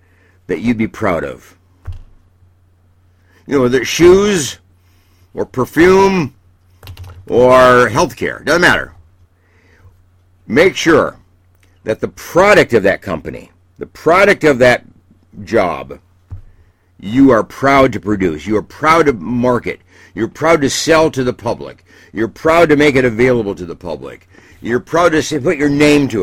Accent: American